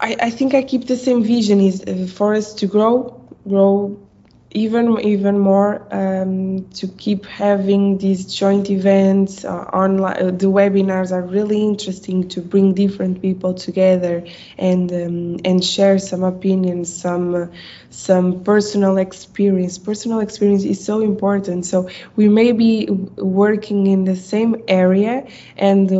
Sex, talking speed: female, 140 wpm